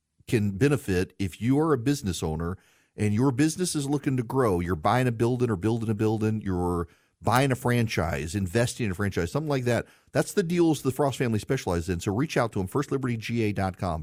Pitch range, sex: 110-140 Hz, male